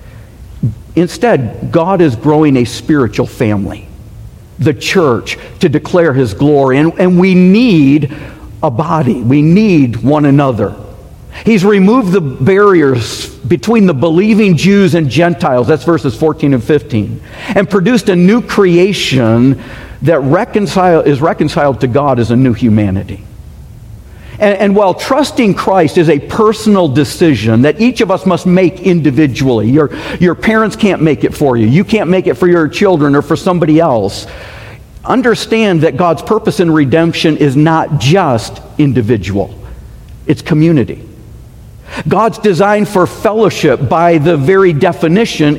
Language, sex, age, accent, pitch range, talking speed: English, male, 50-69, American, 130-190 Hz, 140 wpm